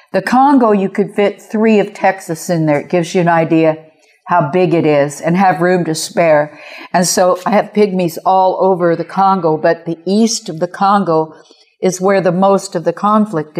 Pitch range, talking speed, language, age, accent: 175-210 Hz, 205 wpm, English, 60-79, American